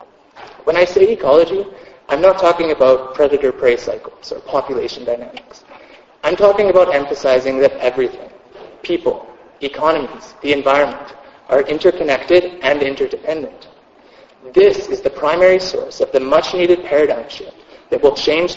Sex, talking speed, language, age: male, 130 wpm, English, 30-49